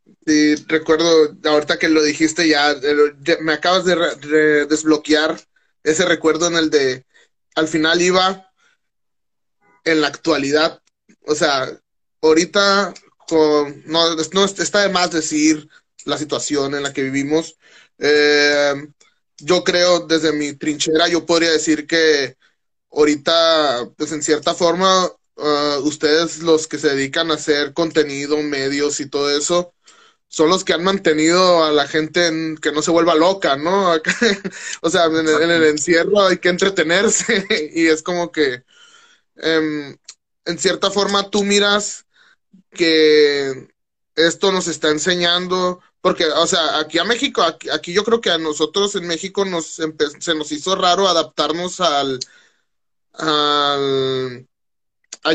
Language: Spanish